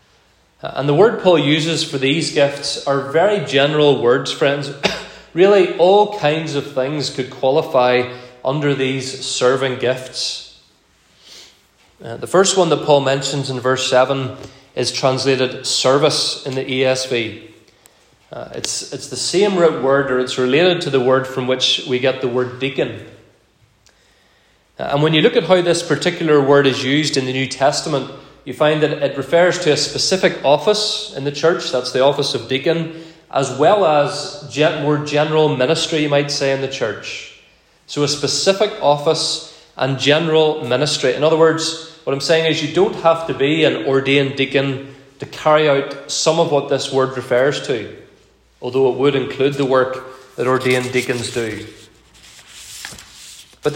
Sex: male